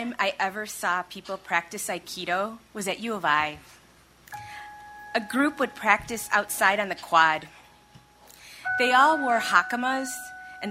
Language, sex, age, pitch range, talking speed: English, female, 20-39, 190-280 Hz, 135 wpm